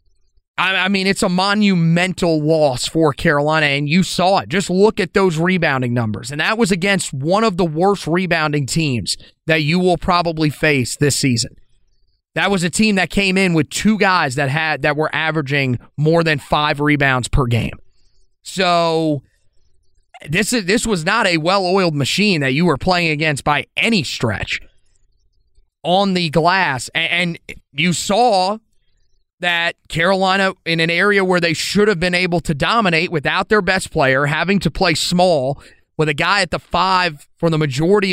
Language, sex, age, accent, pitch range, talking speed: English, male, 30-49, American, 145-185 Hz, 175 wpm